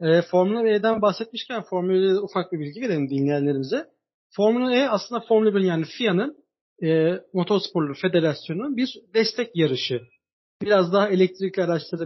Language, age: Turkish, 40-59